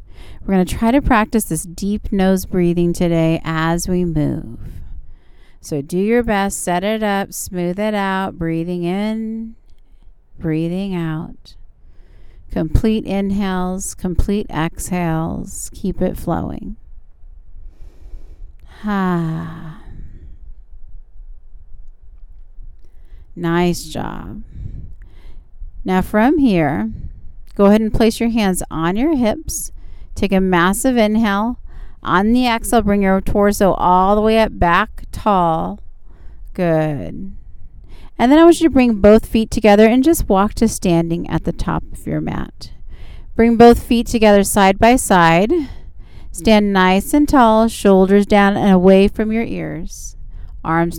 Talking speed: 125 wpm